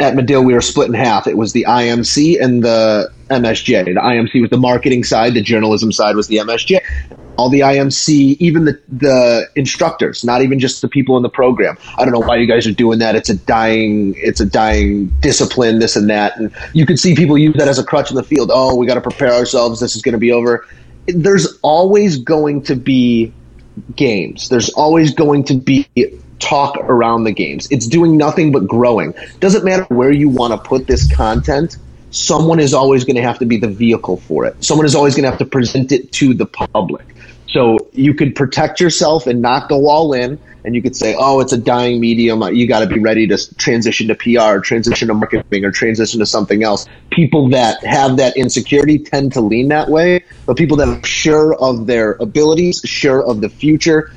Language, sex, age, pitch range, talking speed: English, male, 30-49, 115-145 Hz, 215 wpm